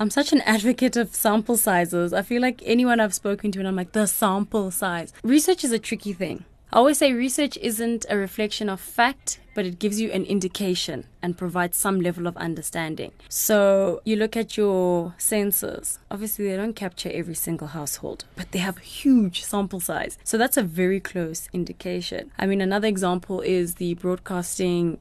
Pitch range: 180-220 Hz